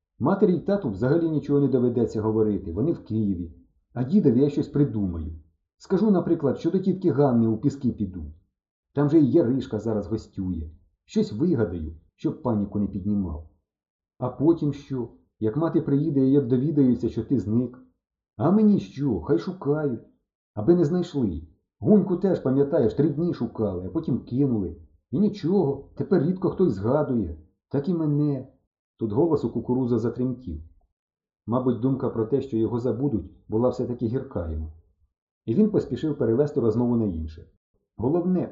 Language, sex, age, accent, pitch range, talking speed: Ukrainian, male, 50-69, native, 100-155 Hz, 155 wpm